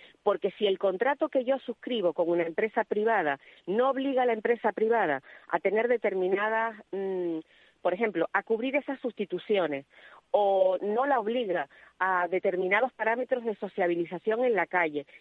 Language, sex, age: Spanish, female, 40-59